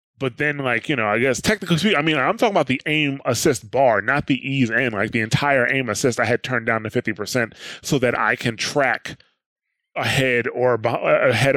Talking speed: 215 wpm